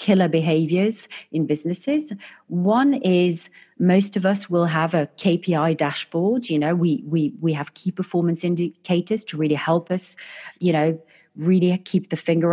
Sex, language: female, English